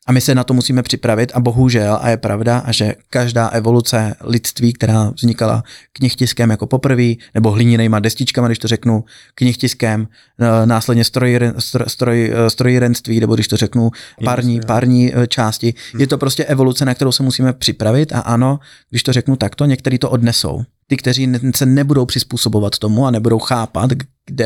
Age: 30-49